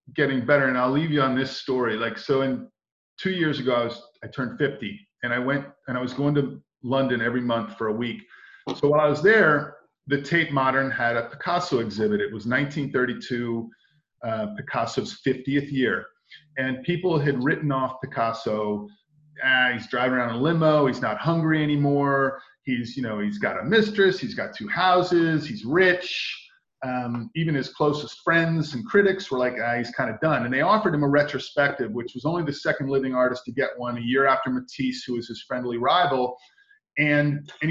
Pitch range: 125-155 Hz